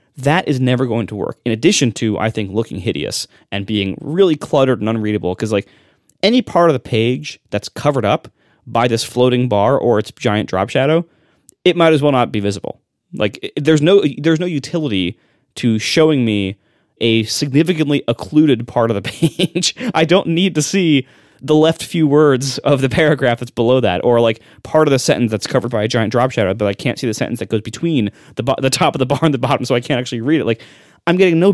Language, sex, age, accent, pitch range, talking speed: English, male, 20-39, American, 115-155 Hz, 225 wpm